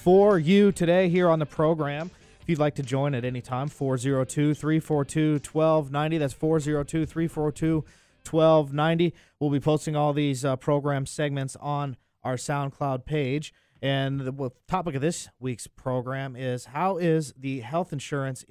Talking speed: 140 wpm